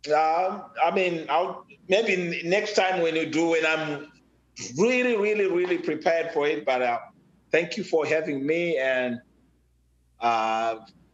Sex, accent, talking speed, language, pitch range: male, Nigerian, 150 wpm, English, 125-170 Hz